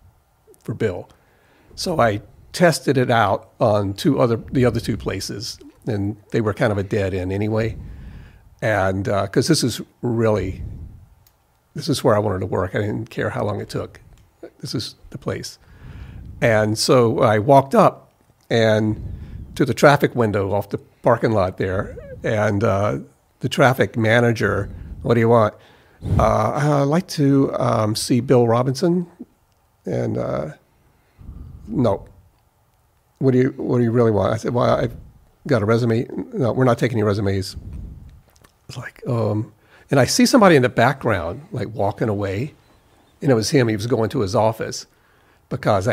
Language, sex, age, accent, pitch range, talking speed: English, male, 50-69, American, 105-130 Hz, 165 wpm